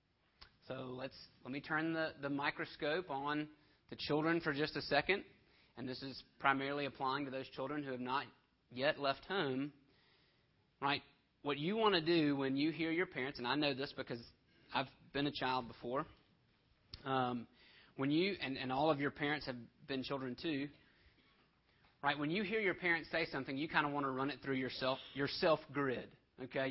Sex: male